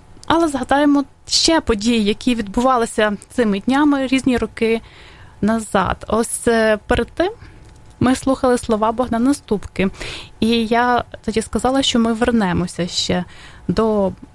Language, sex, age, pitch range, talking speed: English, female, 20-39, 225-265 Hz, 115 wpm